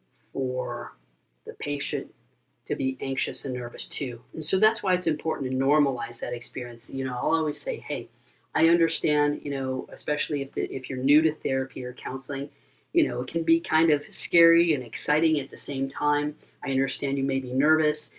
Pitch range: 130-160 Hz